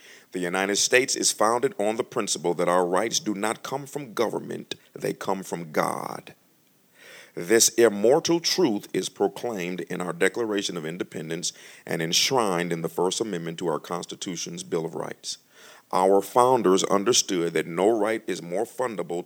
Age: 50-69